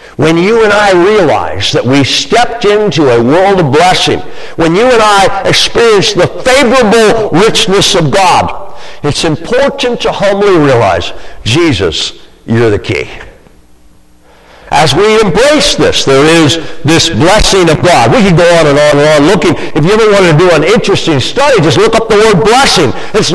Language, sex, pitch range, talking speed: English, male, 150-215 Hz, 170 wpm